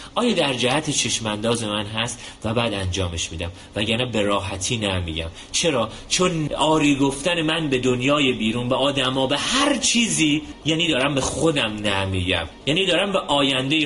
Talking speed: 155 wpm